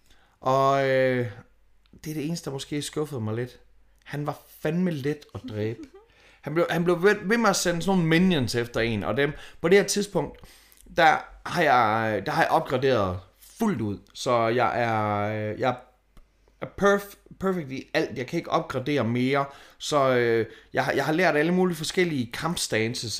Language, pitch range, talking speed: Danish, 120-170 Hz, 180 wpm